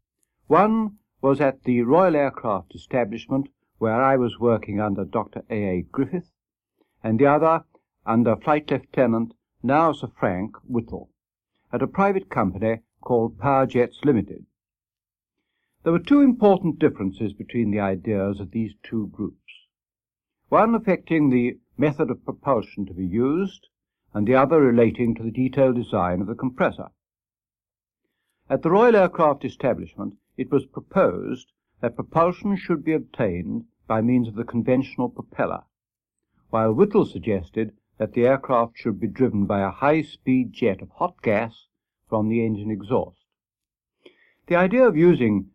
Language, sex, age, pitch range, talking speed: English, male, 60-79, 110-150 Hz, 145 wpm